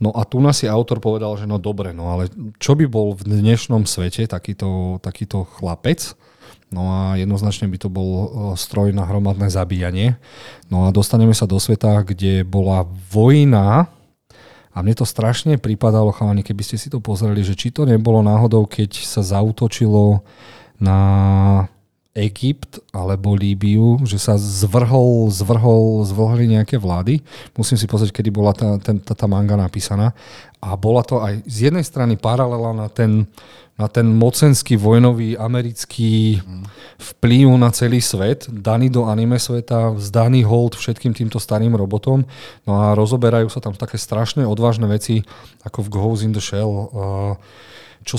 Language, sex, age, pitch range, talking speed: Slovak, male, 40-59, 100-115 Hz, 155 wpm